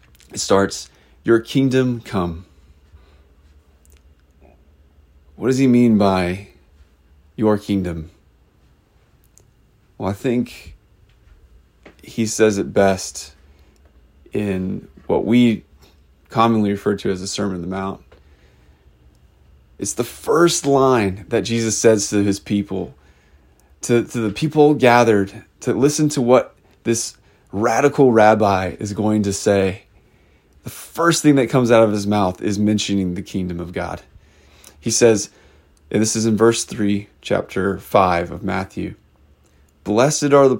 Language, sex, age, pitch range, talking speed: English, male, 30-49, 75-115 Hz, 130 wpm